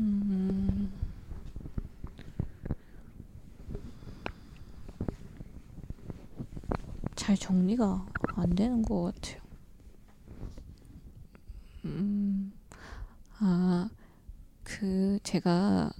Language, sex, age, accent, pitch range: Korean, female, 20-39, native, 175-215 Hz